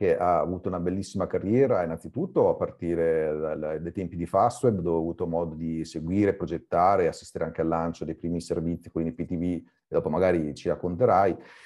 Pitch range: 85-110 Hz